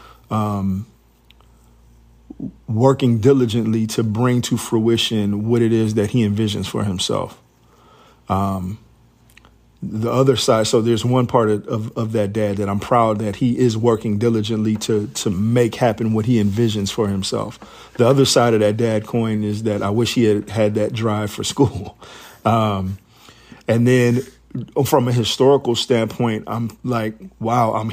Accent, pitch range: American, 105-120 Hz